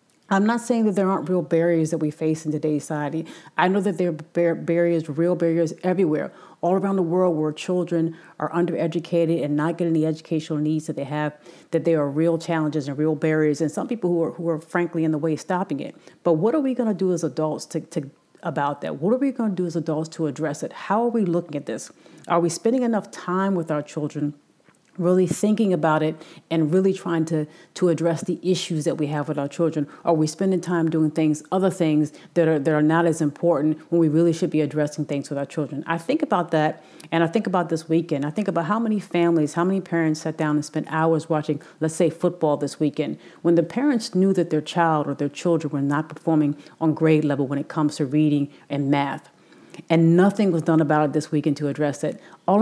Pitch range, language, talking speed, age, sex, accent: 155-175 Hz, English, 235 wpm, 40-59, female, American